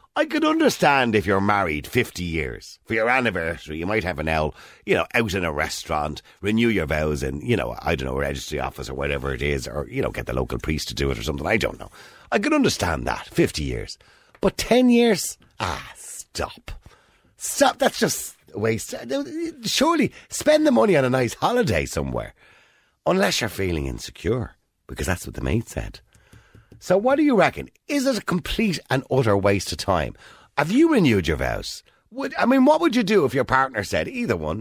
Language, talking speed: English, 205 wpm